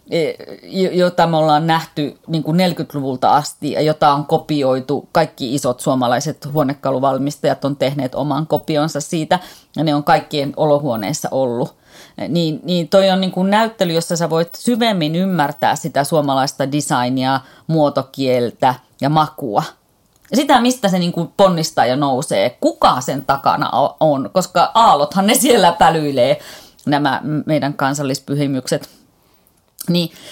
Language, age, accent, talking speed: Finnish, 30-49, native, 125 wpm